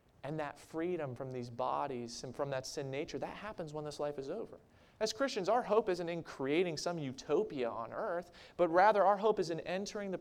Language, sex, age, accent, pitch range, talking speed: English, male, 30-49, American, 140-185 Hz, 215 wpm